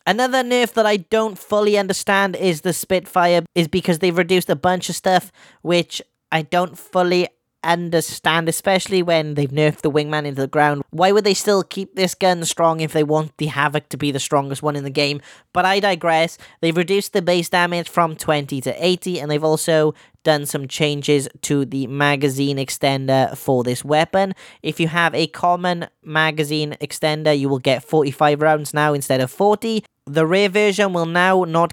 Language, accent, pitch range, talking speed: English, British, 145-180 Hz, 190 wpm